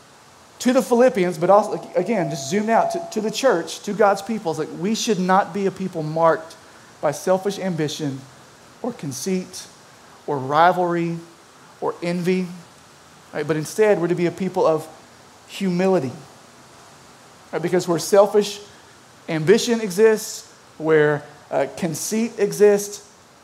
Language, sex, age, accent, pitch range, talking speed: English, male, 30-49, American, 165-205 Hz, 130 wpm